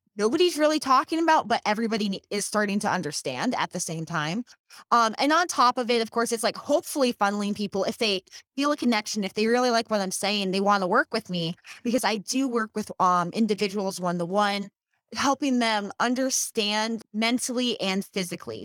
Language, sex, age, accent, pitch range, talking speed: English, female, 20-39, American, 190-235 Hz, 195 wpm